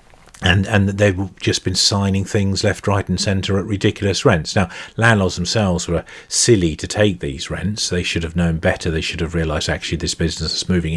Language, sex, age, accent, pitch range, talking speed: English, male, 40-59, British, 85-100 Hz, 200 wpm